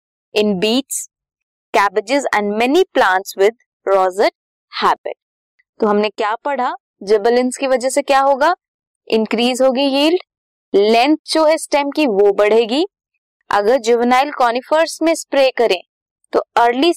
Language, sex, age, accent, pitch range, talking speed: Hindi, female, 20-39, native, 210-295 Hz, 130 wpm